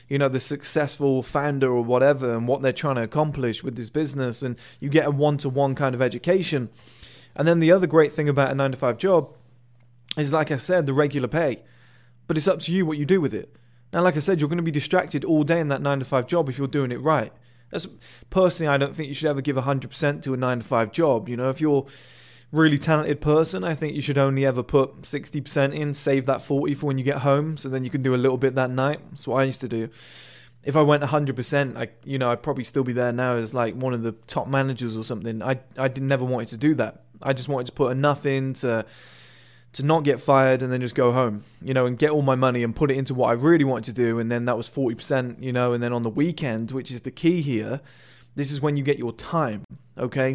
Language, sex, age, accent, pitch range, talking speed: English, male, 20-39, British, 125-150 Hz, 255 wpm